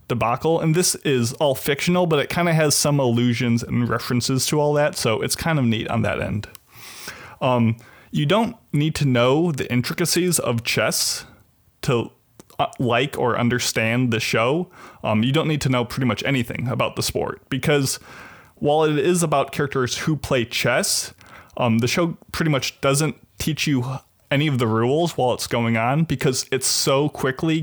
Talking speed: 180 wpm